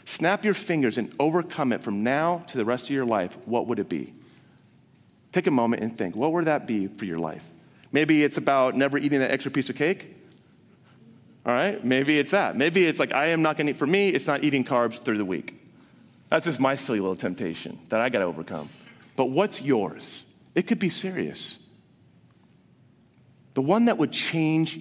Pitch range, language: 120-160 Hz, English